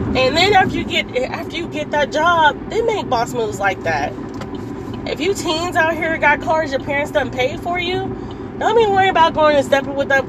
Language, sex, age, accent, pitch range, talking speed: English, female, 20-39, American, 245-300 Hz, 220 wpm